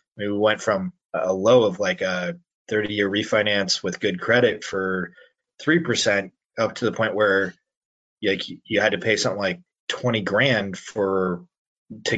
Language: English